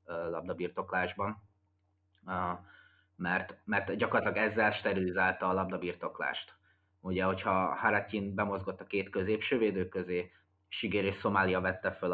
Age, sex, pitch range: 20-39, male, 95-100 Hz